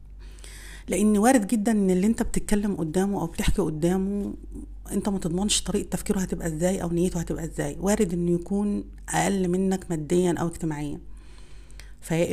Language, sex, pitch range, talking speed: Arabic, female, 155-185 Hz, 150 wpm